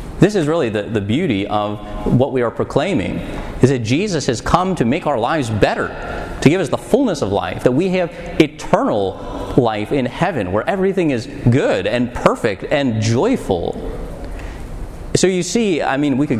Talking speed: 185 wpm